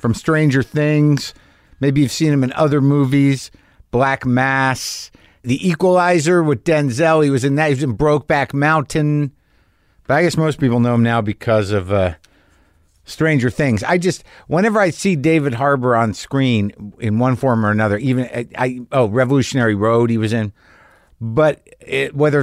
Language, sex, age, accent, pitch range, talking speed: English, male, 50-69, American, 105-145 Hz, 165 wpm